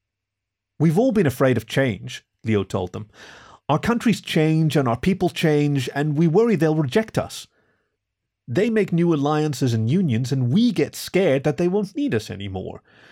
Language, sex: English, male